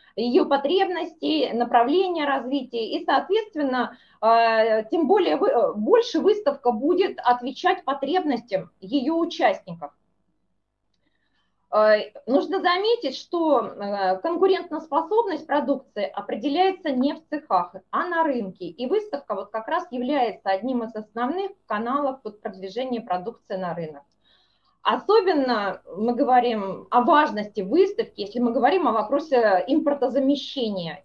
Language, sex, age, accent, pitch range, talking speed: Russian, female, 20-39, native, 215-290 Hz, 100 wpm